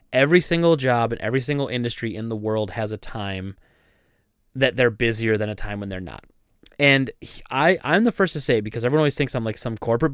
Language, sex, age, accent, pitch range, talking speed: English, male, 20-39, American, 110-150 Hz, 220 wpm